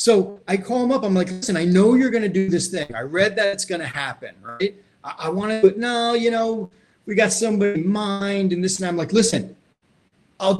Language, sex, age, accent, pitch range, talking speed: English, male, 30-49, American, 145-205 Hz, 245 wpm